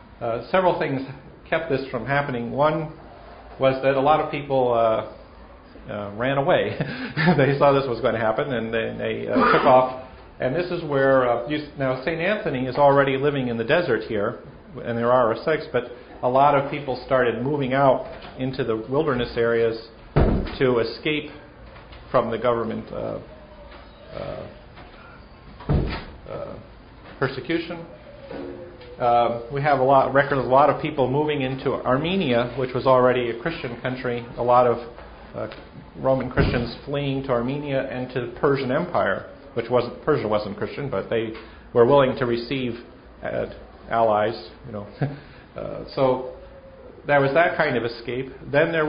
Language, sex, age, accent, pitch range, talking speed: English, male, 50-69, American, 120-145 Hz, 160 wpm